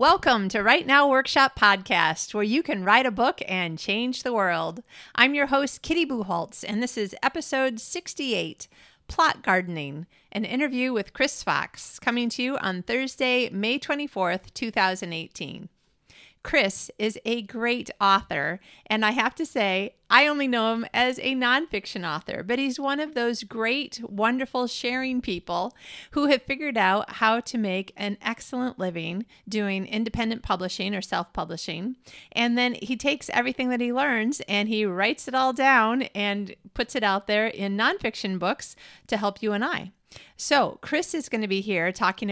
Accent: American